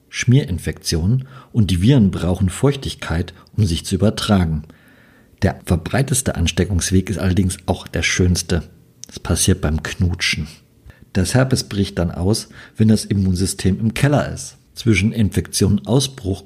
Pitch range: 90-125 Hz